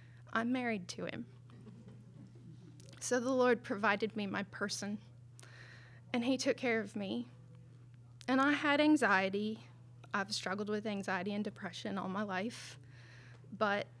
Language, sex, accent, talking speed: English, female, American, 135 wpm